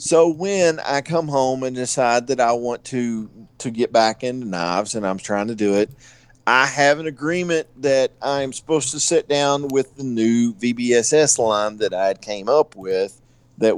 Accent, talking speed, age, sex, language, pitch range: American, 185 wpm, 50-69, male, English, 115-135 Hz